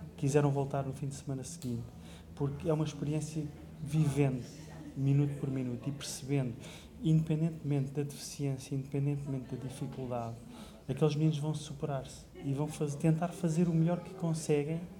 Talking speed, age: 145 wpm, 20-39